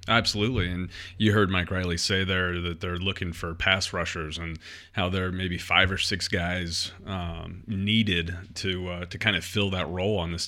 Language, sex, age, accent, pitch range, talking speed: English, male, 30-49, American, 90-100 Hz, 195 wpm